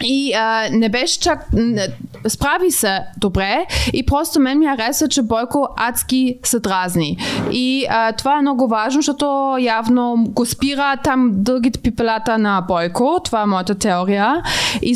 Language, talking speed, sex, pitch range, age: Bulgarian, 160 wpm, female, 220-270 Hz, 20-39